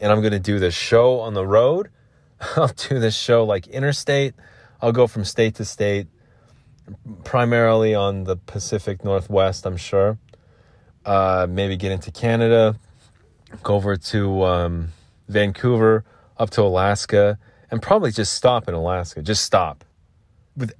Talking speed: 145 wpm